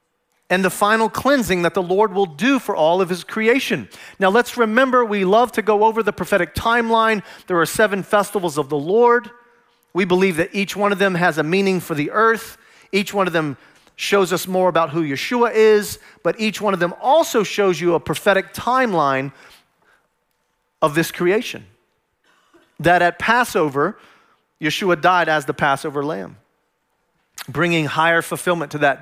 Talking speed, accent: 175 wpm, American